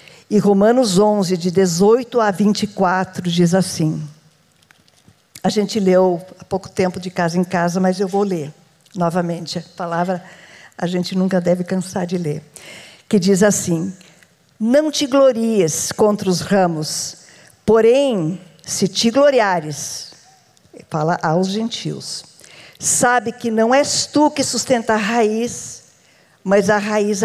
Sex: female